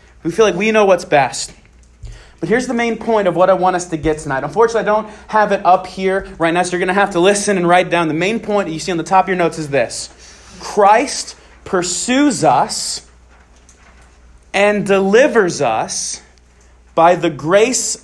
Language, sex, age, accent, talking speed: English, male, 30-49, American, 205 wpm